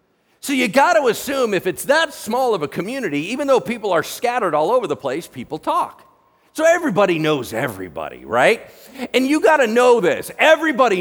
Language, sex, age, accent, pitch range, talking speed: English, male, 40-59, American, 160-235 Hz, 180 wpm